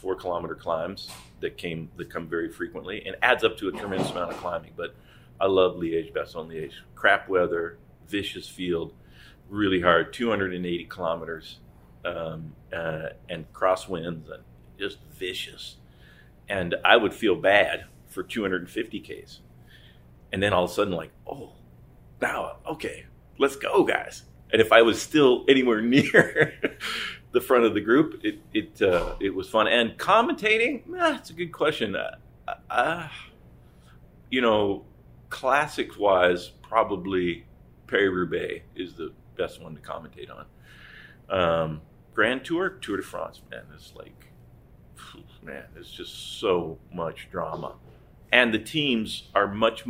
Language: English